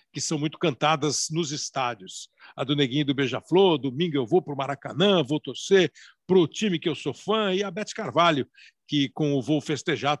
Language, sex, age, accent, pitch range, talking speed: Portuguese, male, 60-79, Brazilian, 140-195 Hz, 205 wpm